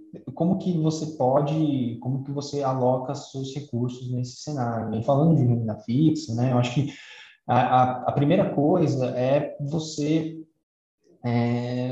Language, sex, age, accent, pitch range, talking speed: Portuguese, male, 20-39, Brazilian, 120-150 Hz, 145 wpm